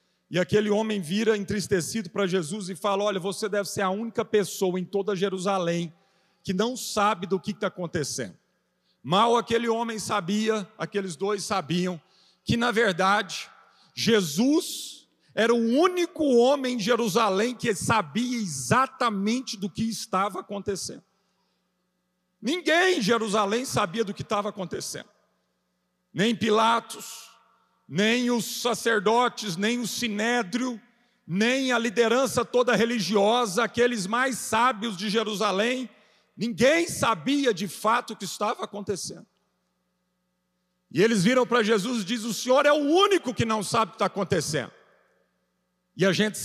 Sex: male